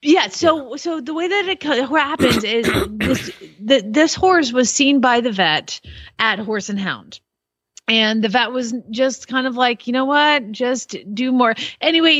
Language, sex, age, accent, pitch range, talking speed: English, female, 30-49, American, 220-285 Hz, 185 wpm